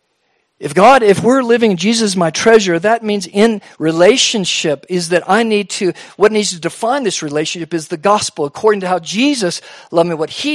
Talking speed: 195 wpm